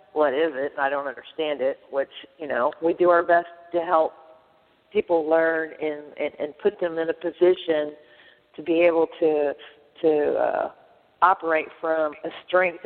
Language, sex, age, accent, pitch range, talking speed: English, female, 50-69, American, 160-185 Hz, 170 wpm